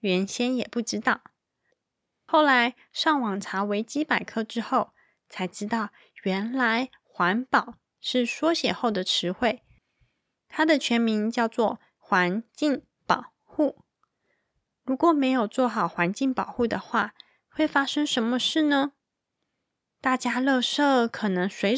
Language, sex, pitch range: Chinese, female, 210-270 Hz